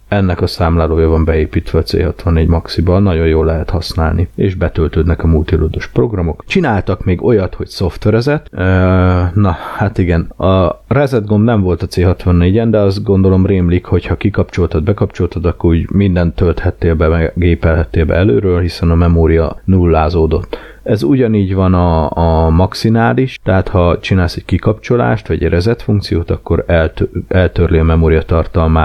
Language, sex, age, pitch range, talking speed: Hungarian, male, 30-49, 85-105 Hz, 150 wpm